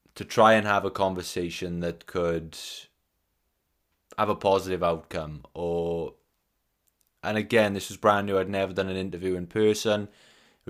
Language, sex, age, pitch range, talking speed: English, male, 20-39, 85-95 Hz, 150 wpm